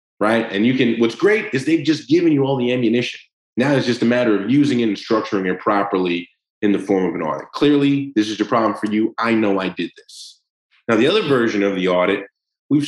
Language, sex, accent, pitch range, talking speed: English, male, American, 100-135 Hz, 240 wpm